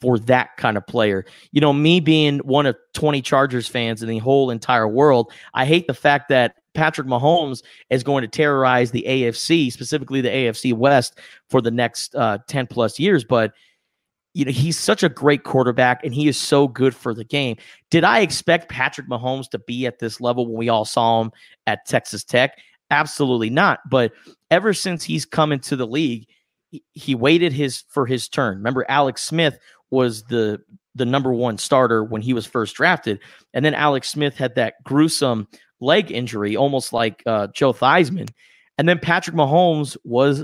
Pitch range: 125-160 Hz